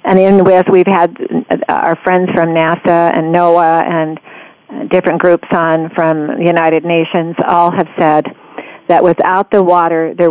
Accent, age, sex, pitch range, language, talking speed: American, 50-69, female, 165-195 Hz, English, 155 wpm